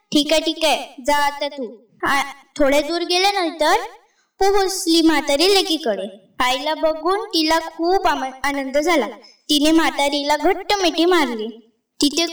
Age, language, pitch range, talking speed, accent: 20-39, Marathi, 275-350 Hz, 115 wpm, native